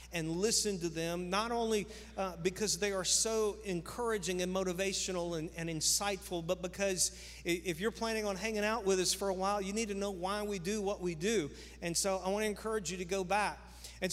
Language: English